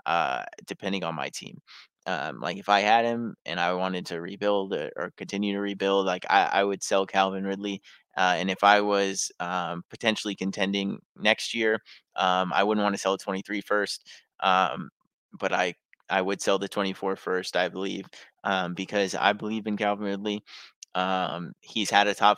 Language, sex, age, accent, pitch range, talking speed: English, male, 20-39, American, 95-105 Hz, 185 wpm